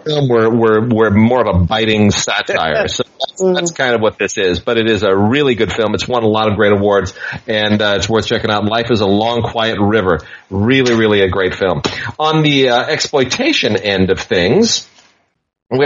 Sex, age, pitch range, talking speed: male, 30-49, 100-125 Hz, 205 wpm